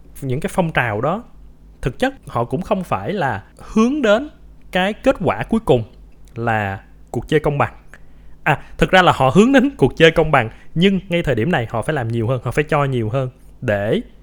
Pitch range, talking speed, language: 105-155 Hz, 215 wpm, Vietnamese